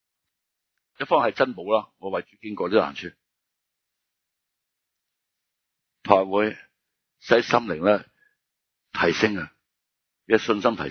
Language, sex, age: Chinese, male, 60-79